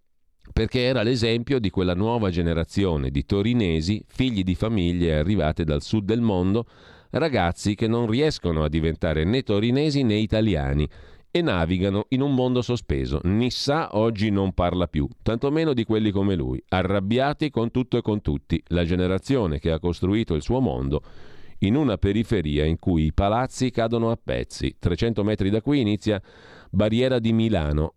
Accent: native